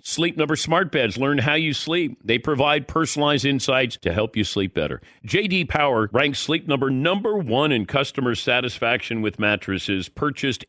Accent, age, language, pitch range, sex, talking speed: American, 50-69, English, 115-155 Hz, male, 170 wpm